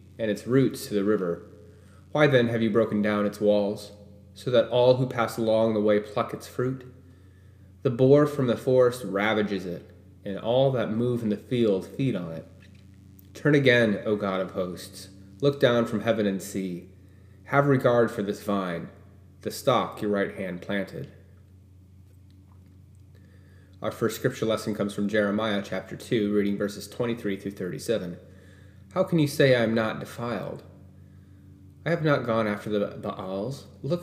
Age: 20-39